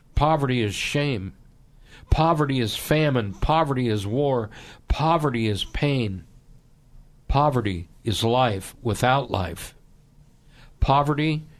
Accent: American